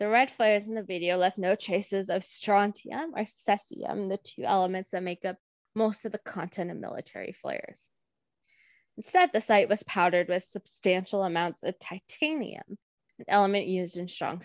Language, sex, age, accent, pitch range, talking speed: English, female, 10-29, American, 185-225 Hz, 170 wpm